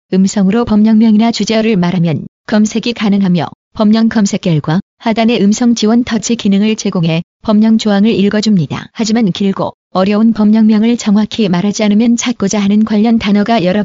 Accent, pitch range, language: native, 195-225 Hz, Korean